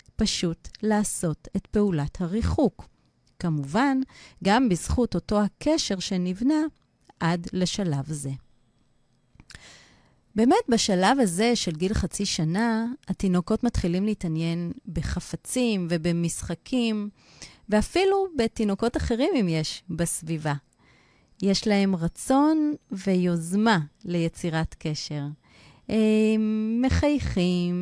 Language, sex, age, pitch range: Hebrew, female, 30-49, 170-230 Hz